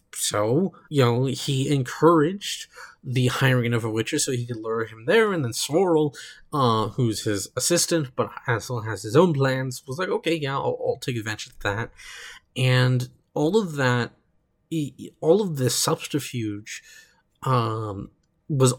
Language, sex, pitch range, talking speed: English, male, 120-160 Hz, 160 wpm